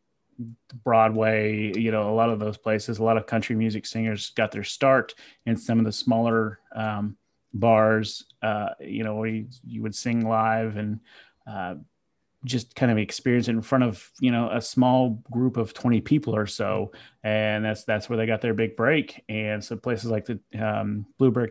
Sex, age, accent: male, 30-49, American